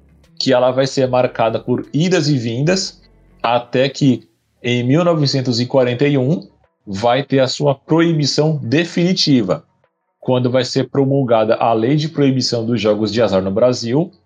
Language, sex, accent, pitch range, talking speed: Portuguese, male, Brazilian, 120-145 Hz, 140 wpm